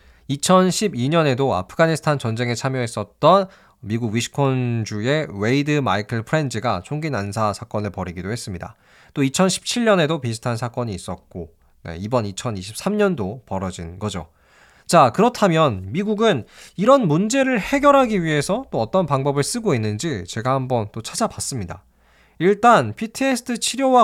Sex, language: male, Korean